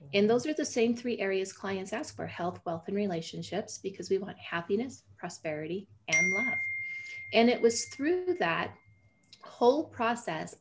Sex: female